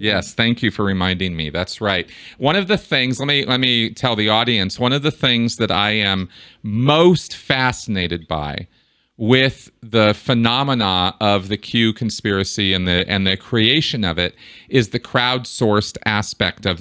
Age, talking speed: 40-59, 170 wpm